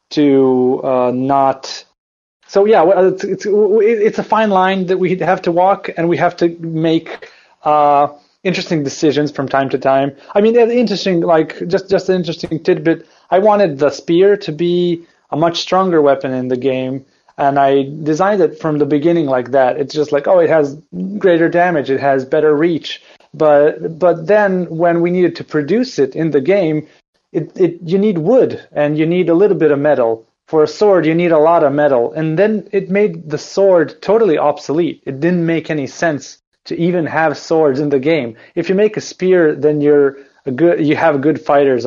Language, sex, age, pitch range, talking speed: English, male, 30-49, 140-175 Hz, 200 wpm